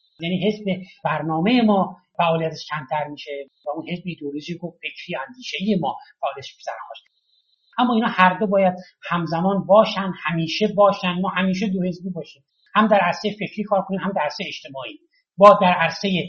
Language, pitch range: Persian, 180-220 Hz